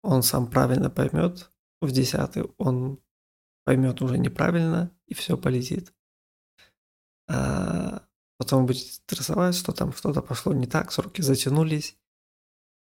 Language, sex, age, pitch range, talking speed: Russian, male, 20-39, 125-155 Hz, 115 wpm